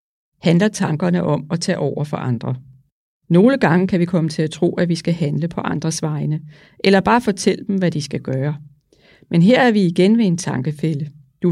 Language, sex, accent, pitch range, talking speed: Danish, female, native, 150-190 Hz, 210 wpm